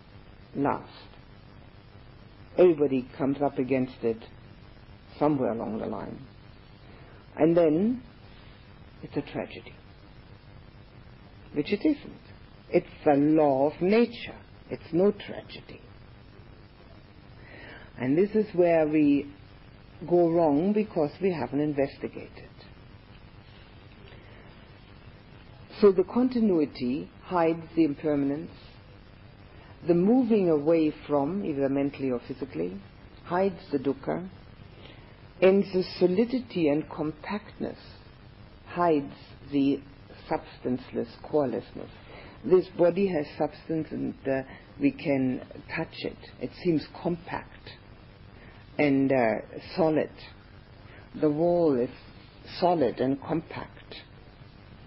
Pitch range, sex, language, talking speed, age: 115-160 Hz, female, English, 95 wpm, 60-79